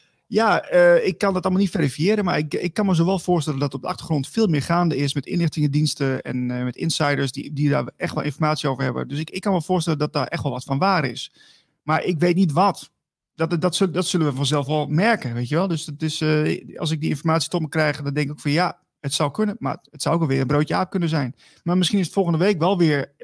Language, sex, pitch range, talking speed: English, male, 140-180 Hz, 275 wpm